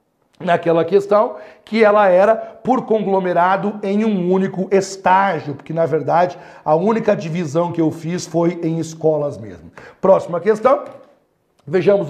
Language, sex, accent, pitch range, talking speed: Portuguese, male, Brazilian, 180-220 Hz, 135 wpm